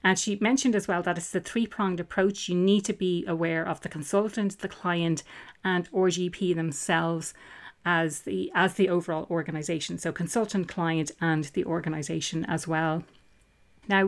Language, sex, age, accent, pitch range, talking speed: English, female, 30-49, Irish, 170-195 Hz, 165 wpm